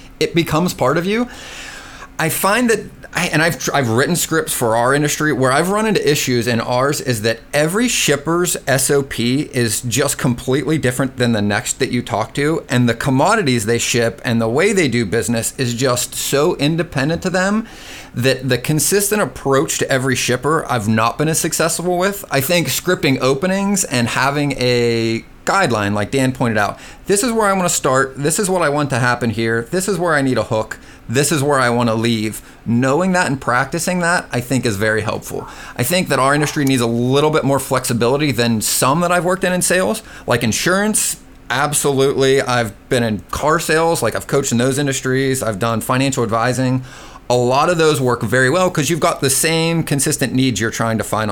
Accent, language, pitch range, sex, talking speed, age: American, English, 120-160 Hz, male, 205 wpm, 40-59